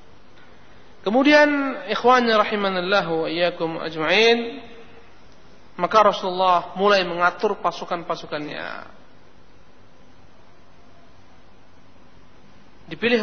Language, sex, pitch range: Indonesian, male, 180-240 Hz